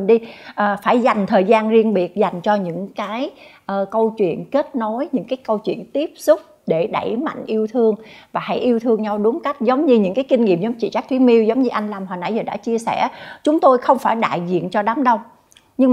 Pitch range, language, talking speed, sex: 200-270 Hz, Vietnamese, 240 wpm, female